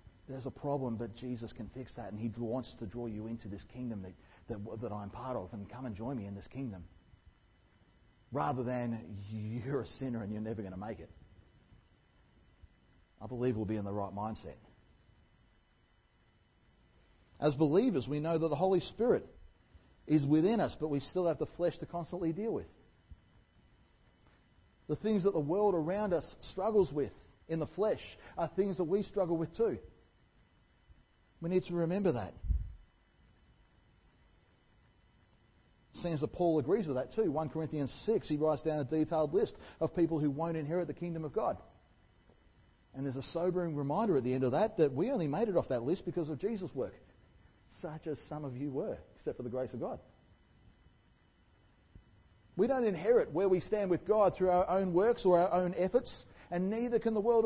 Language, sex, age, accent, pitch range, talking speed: English, male, 40-59, Australian, 110-175 Hz, 185 wpm